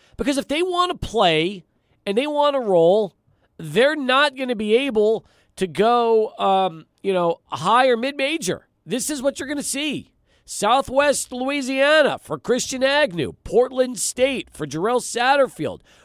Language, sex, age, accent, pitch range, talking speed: English, male, 40-59, American, 195-270 Hz, 155 wpm